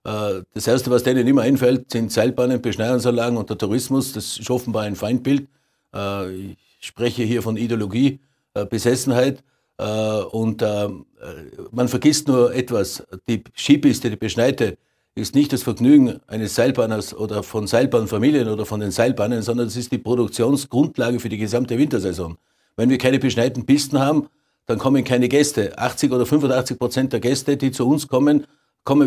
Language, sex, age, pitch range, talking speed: German, male, 50-69, 115-135 Hz, 155 wpm